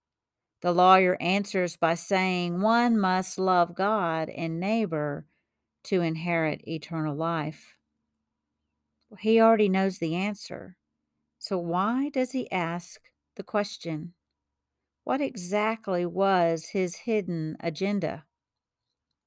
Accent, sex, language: American, female, English